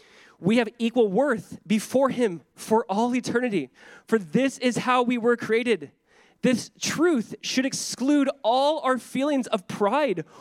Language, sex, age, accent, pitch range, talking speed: English, male, 20-39, American, 150-230 Hz, 145 wpm